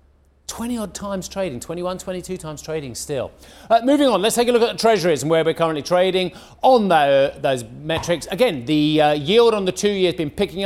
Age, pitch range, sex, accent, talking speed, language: 30-49, 140-185 Hz, male, British, 225 wpm, English